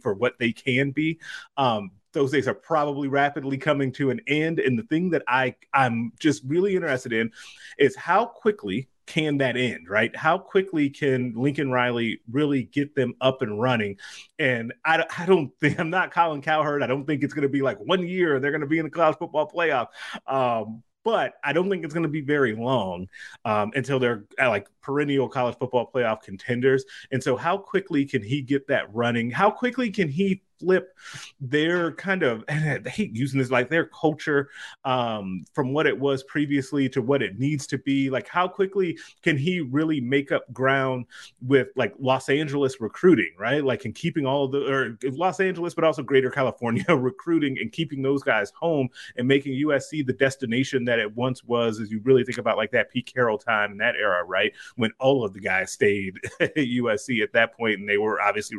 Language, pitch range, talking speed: English, 125-155 Hz, 205 wpm